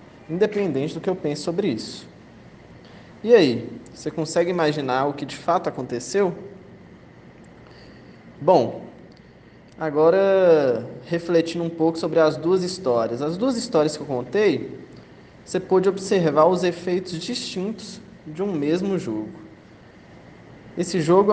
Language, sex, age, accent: Portuguese, male, 20-39, Brazilian